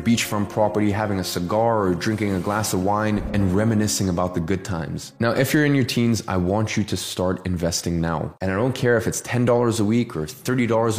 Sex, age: male, 20-39